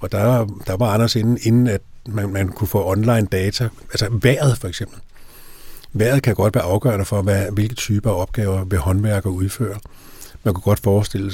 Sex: male